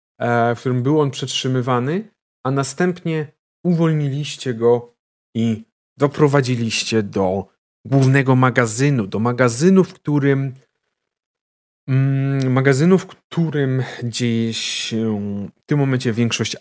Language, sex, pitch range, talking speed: Polish, male, 105-130 Hz, 95 wpm